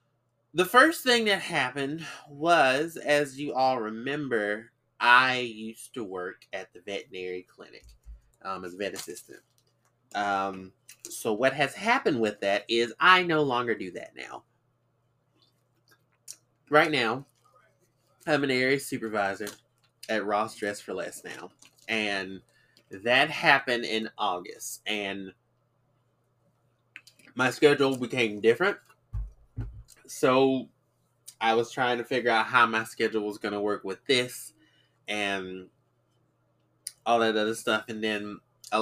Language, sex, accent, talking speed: English, male, American, 130 wpm